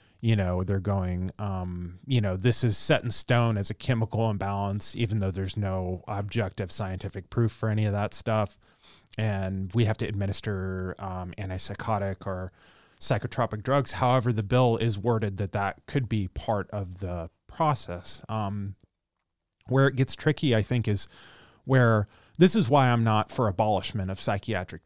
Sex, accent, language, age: male, American, English, 30-49